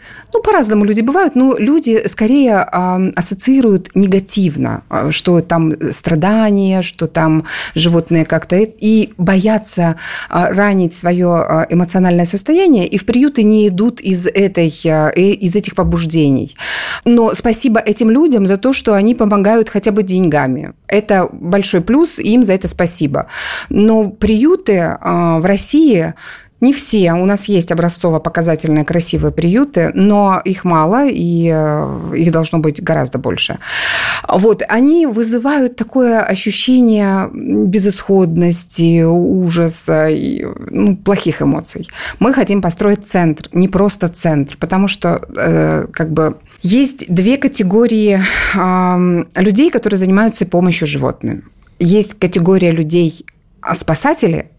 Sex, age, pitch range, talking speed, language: female, 30-49, 170-220 Hz, 115 wpm, Russian